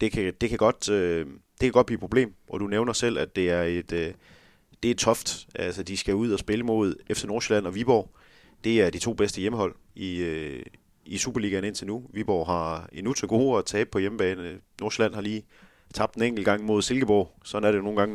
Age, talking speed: 30-49, 220 wpm